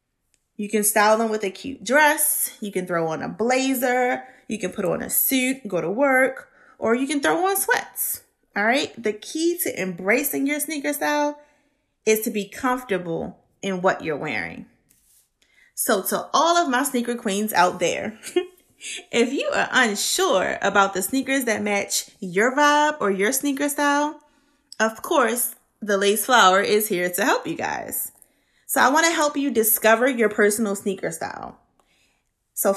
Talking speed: 170 wpm